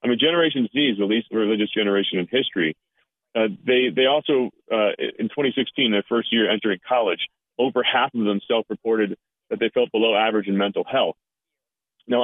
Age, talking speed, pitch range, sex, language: 40-59, 185 wpm, 105-130 Hz, male, English